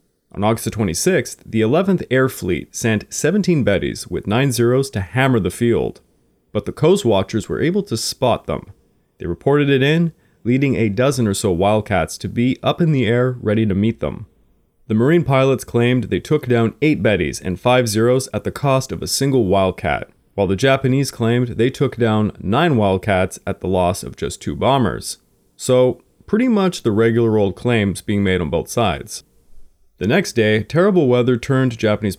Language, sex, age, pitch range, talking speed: English, male, 30-49, 100-130 Hz, 185 wpm